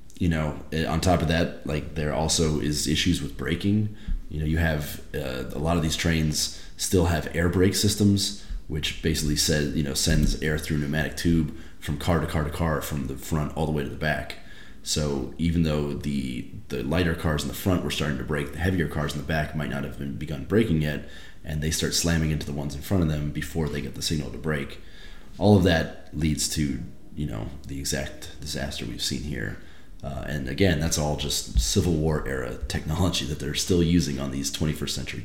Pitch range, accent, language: 75-85 Hz, American, English